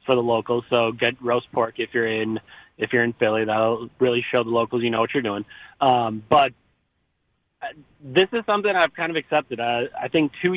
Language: English